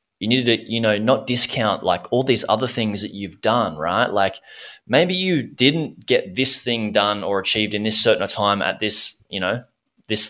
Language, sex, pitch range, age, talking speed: English, male, 95-115 Hz, 20-39, 205 wpm